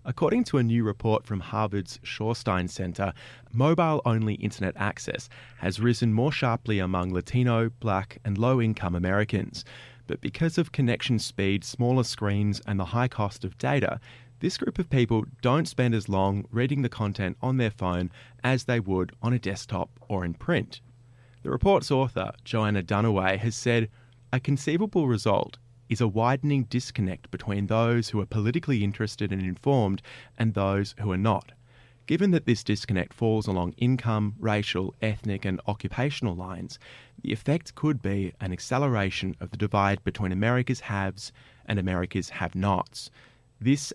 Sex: male